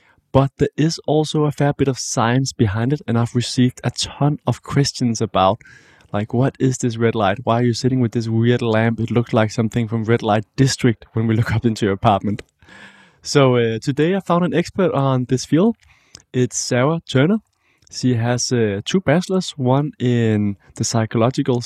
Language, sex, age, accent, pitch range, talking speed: English, male, 20-39, Danish, 110-135 Hz, 195 wpm